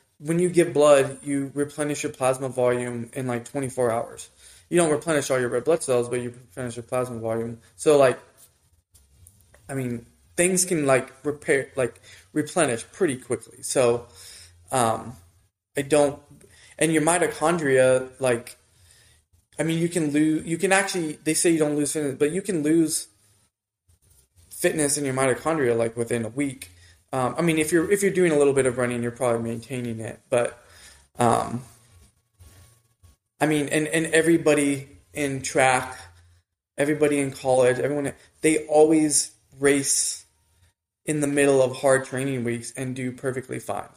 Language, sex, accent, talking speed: English, male, American, 160 wpm